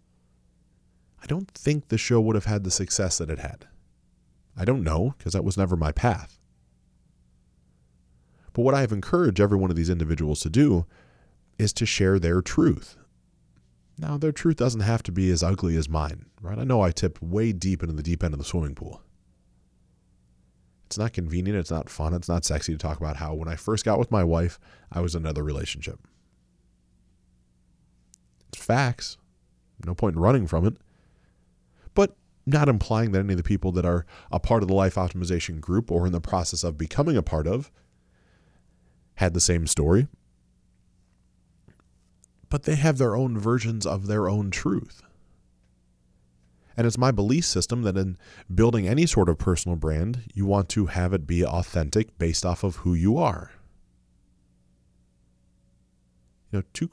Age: 30-49